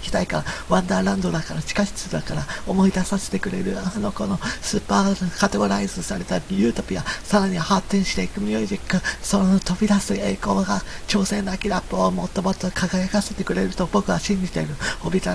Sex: male